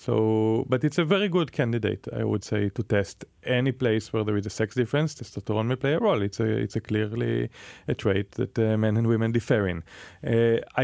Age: 30-49